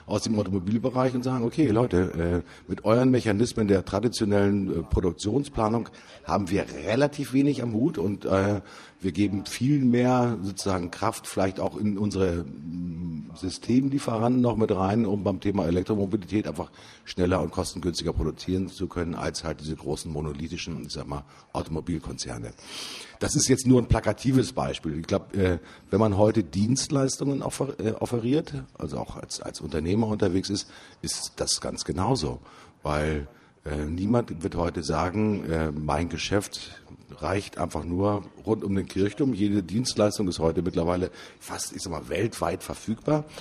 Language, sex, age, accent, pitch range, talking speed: German, male, 50-69, German, 85-110 Hz, 140 wpm